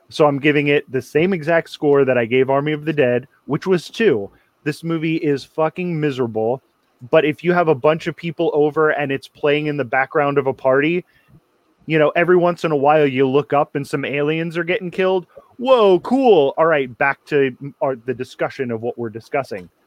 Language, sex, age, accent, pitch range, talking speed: English, male, 20-39, American, 135-165 Hz, 210 wpm